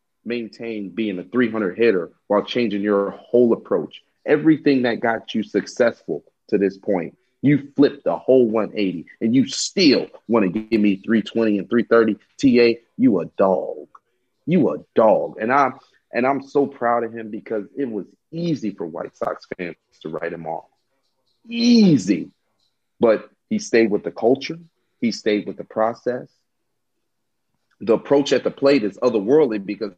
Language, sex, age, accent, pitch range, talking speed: English, male, 30-49, American, 105-135 Hz, 160 wpm